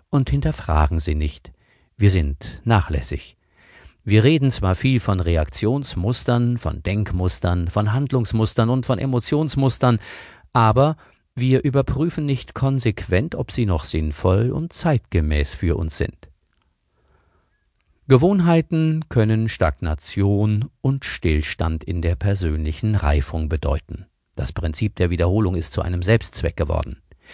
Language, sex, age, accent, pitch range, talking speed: German, male, 50-69, German, 85-125 Hz, 115 wpm